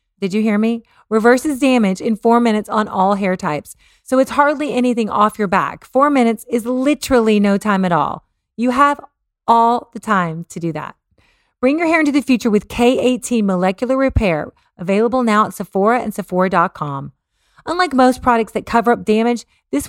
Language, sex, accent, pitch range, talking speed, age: English, female, American, 195-250 Hz, 180 wpm, 30-49